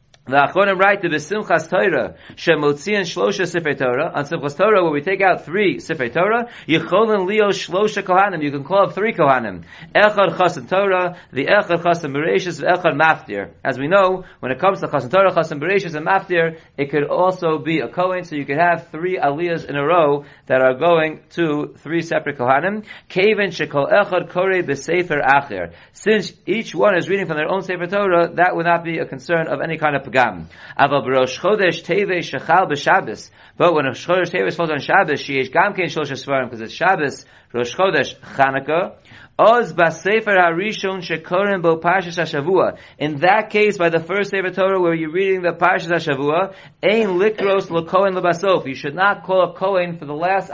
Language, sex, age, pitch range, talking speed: English, male, 40-59, 145-190 Hz, 145 wpm